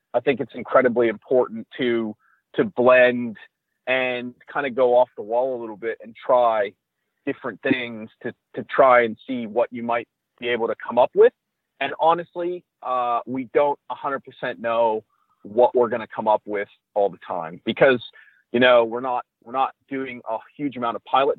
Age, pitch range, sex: 40-59, 115-130 Hz, male